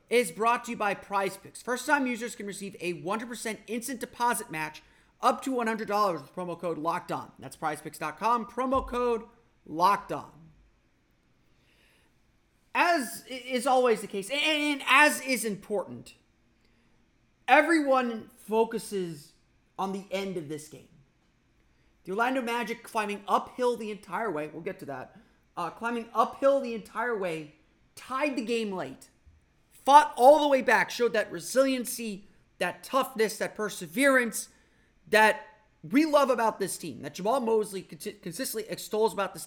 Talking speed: 140 wpm